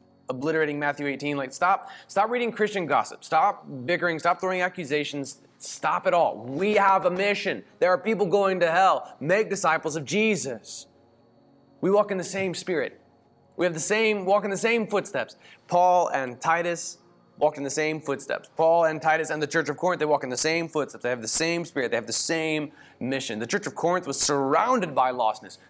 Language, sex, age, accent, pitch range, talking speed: English, male, 20-39, American, 130-175 Hz, 200 wpm